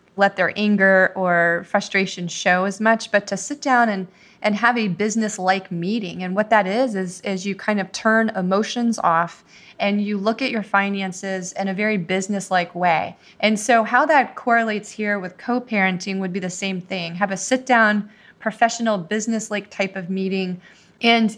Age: 20-39